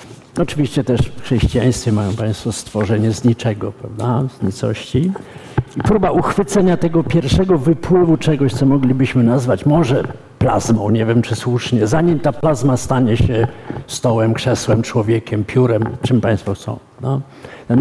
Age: 50-69